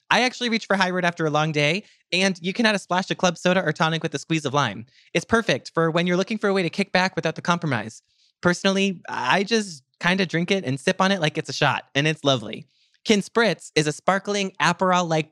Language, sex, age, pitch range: English, male, 20-39, 140-185 Hz